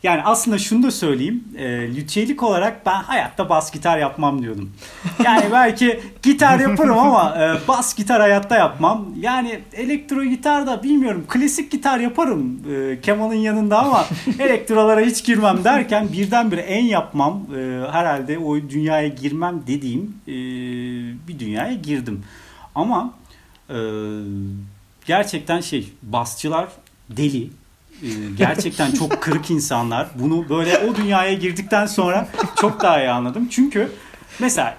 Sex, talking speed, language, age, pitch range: male, 120 wpm, Turkish, 40-59, 135-225 Hz